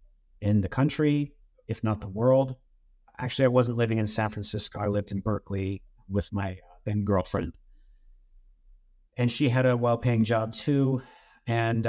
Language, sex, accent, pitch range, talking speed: English, male, American, 105-125 Hz, 155 wpm